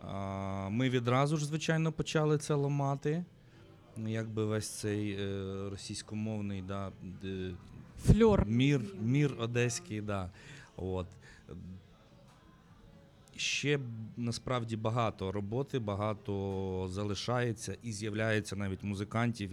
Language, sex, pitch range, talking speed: Ukrainian, male, 95-120 Hz, 80 wpm